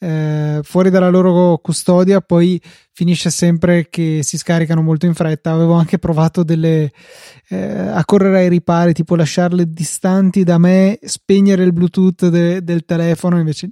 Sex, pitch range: male, 165-185 Hz